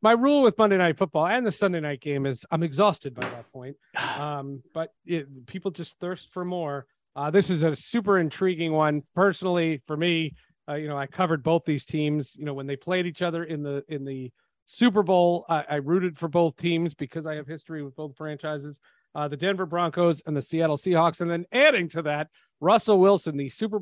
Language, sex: English, male